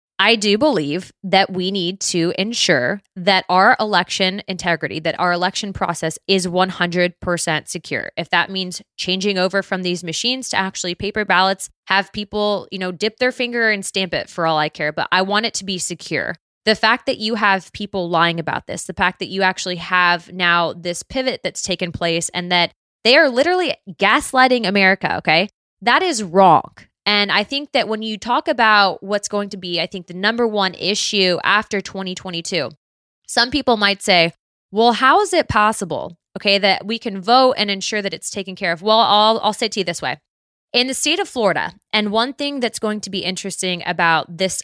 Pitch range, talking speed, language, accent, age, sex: 175-215 Hz, 200 wpm, English, American, 20-39, female